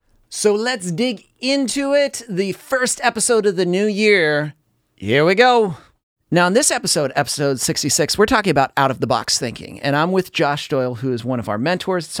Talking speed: 195 wpm